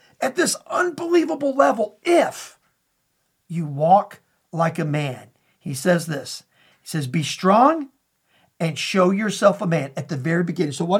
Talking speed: 155 wpm